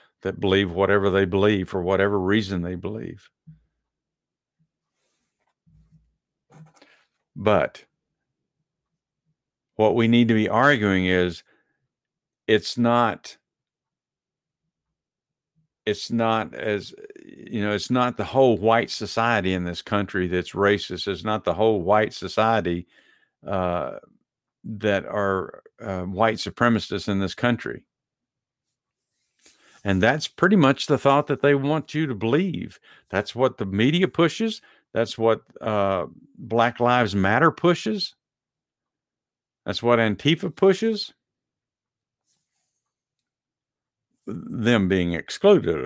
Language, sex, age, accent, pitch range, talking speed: English, male, 50-69, American, 95-130 Hz, 105 wpm